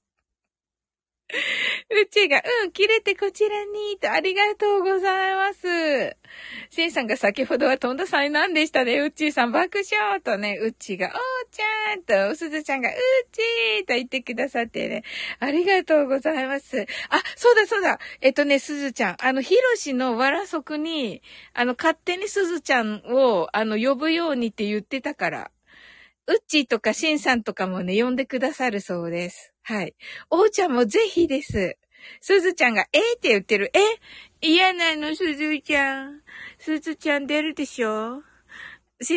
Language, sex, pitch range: Japanese, female, 260-390 Hz